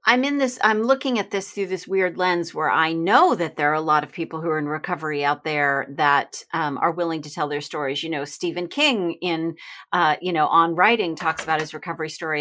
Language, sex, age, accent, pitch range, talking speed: English, female, 40-59, American, 155-185 Hz, 240 wpm